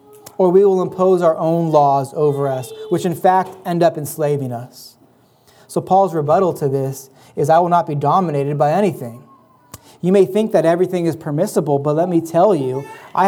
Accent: American